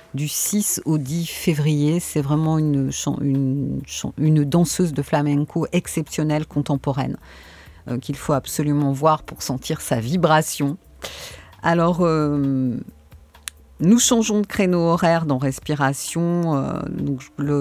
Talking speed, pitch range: 110 wpm, 135-175 Hz